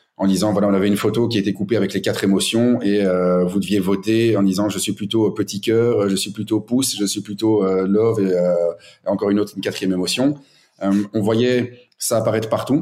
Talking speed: 235 wpm